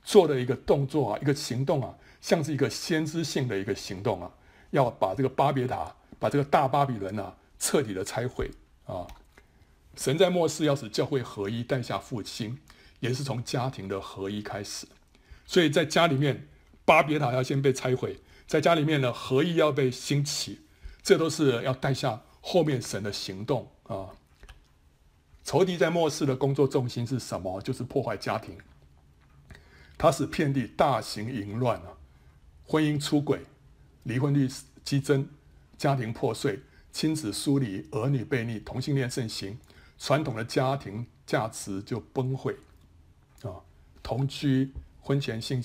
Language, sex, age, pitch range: Chinese, male, 60-79, 105-145 Hz